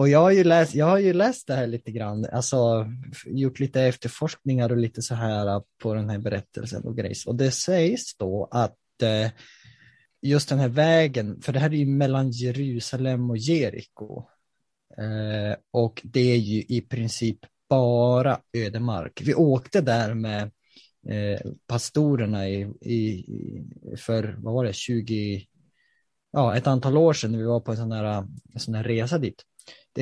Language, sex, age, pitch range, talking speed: Swedish, male, 20-39, 115-140 Hz, 165 wpm